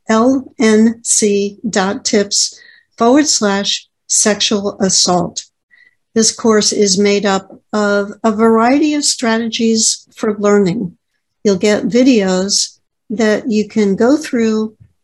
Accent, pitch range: American, 200-235 Hz